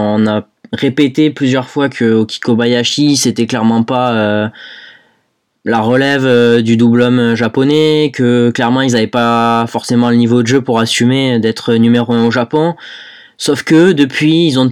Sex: male